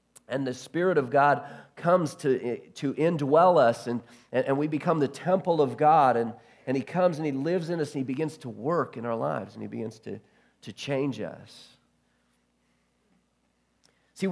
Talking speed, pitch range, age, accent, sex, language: 180 wpm, 115-145 Hz, 40-59, American, male, English